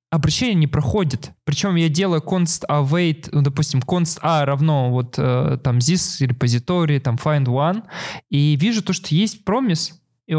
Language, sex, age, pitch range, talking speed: Russian, male, 20-39, 145-185 Hz, 155 wpm